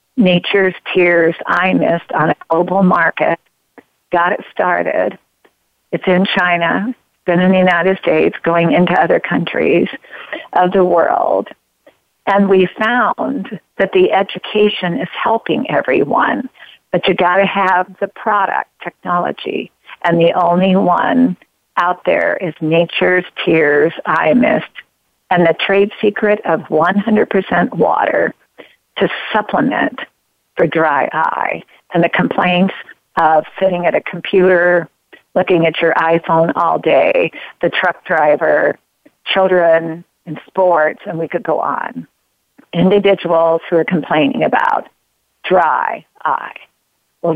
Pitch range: 165-195 Hz